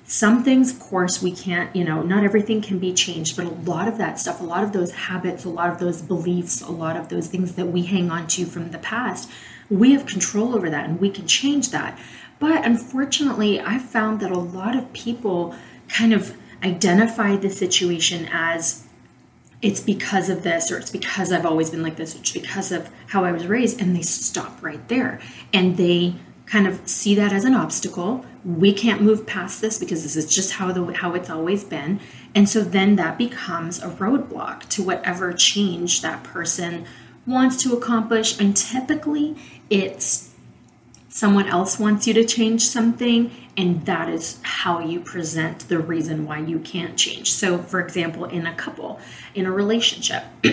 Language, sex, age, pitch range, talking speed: English, female, 30-49, 175-220 Hz, 190 wpm